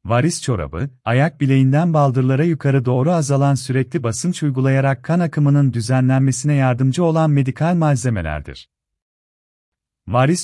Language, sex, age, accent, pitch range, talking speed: Turkish, male, 40-59, native, 120-150 Hz, 110 wpm